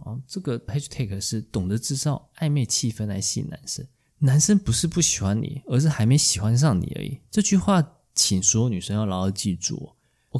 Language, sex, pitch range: Chinese, male, 100-145 Hz